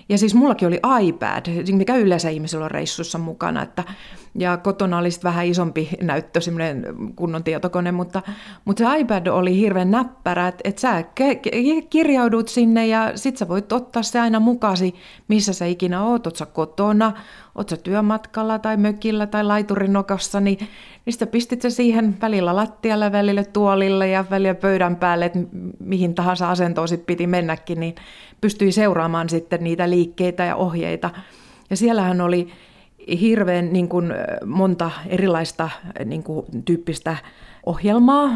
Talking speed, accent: 140 wpm, native